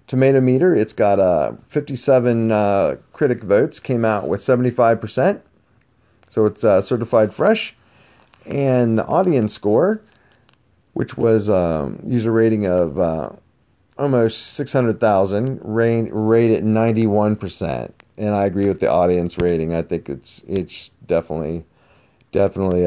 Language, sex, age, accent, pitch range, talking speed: English, male, 40-59, American, 95-125 Hz, 135 wpm